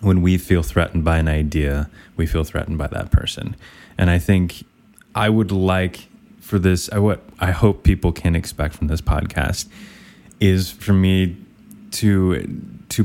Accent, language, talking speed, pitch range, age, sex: American, English, 160 wpm, 80-100 Hz, 20-39, male